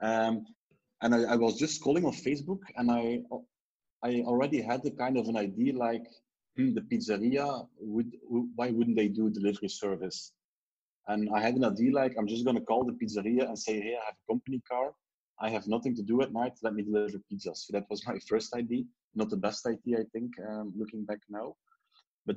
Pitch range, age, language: 110-125 Hz, 30-49, English